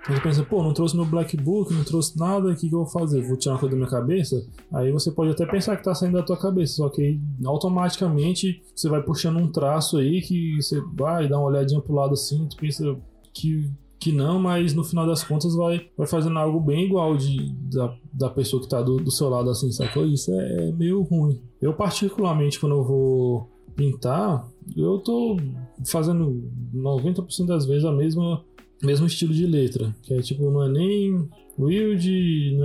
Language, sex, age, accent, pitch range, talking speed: Portuguese, male, 20-39, Brazilian, 130-165 Hz, 200 wpm